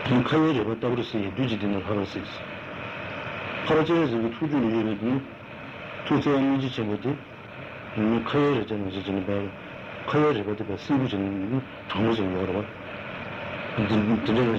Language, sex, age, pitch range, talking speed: Italian, male, 60-79, 100-130 Hz, 70 wpm